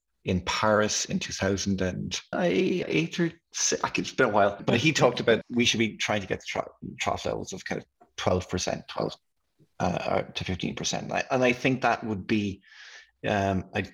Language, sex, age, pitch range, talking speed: English, male, 20-39, 90-110 Hz, 195 wpm